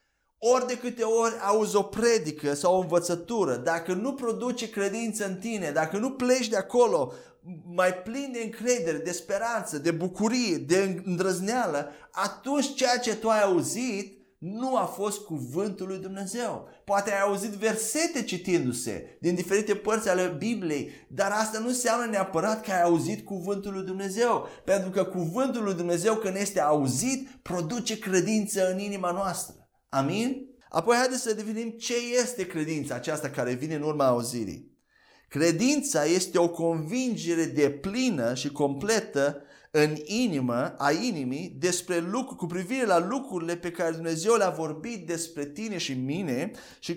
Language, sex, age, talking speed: Romanian, male, 30-49, 150 wpm